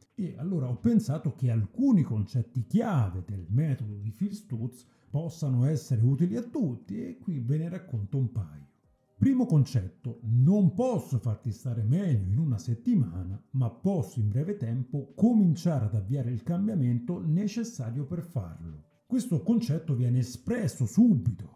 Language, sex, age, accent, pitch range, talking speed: Italian, male, 50-69, native, 115-155 Hz, 150 wpm